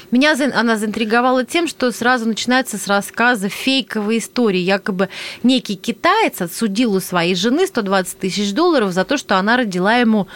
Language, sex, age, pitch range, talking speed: Russian, female, 30-49, 200-265 Hz, 155 wpm